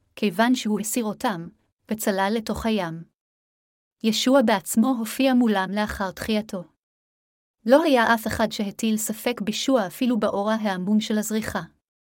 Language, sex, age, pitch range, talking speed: Hebrew, female, 30-49, 195-230 Hz, 125 wpm